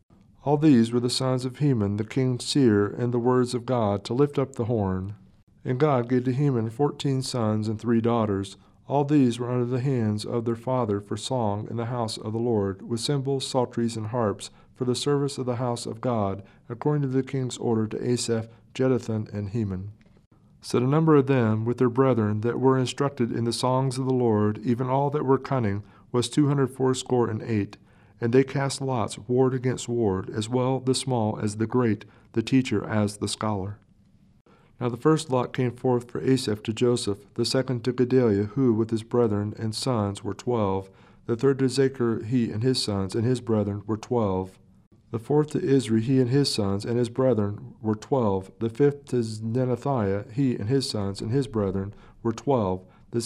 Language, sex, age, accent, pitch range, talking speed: English, male, 50-69, American, 105-130 Hz, 200 wpm